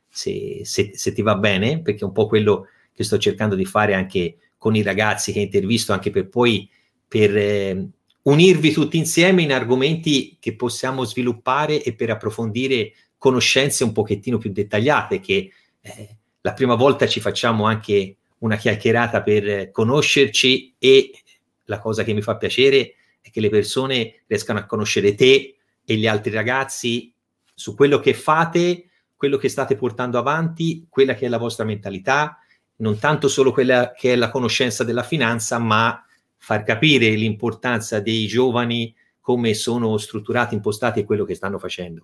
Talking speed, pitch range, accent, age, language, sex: 165 wpm, 105-140 Hz, native, 30-49, Italian, male